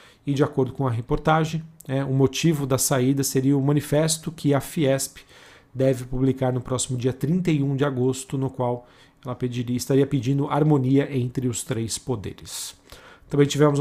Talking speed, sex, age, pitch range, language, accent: 160 wpm, male, 40-59, 130-145 Hz, Portuguese, Brazilian